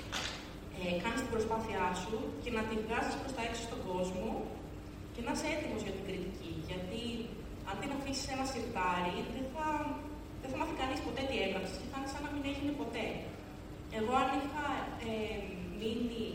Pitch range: 175-245 Hz